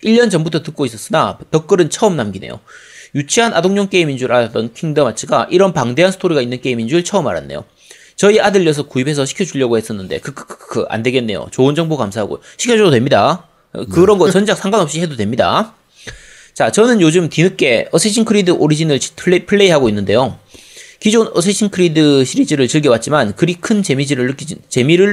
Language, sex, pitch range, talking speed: English, male, 135-190 Hz, 150 wpm